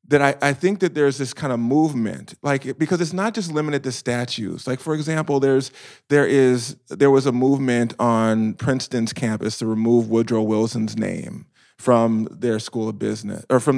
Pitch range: 110-140 Hz